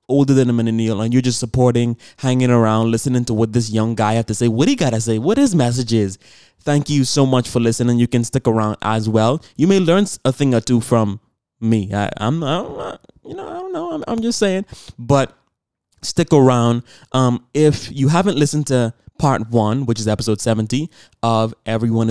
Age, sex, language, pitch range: 20-39, male, English, 115-145 Hz